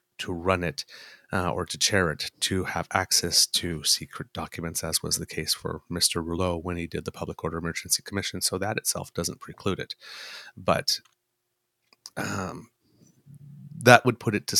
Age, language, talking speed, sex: 30-49, English, 175 wpm, male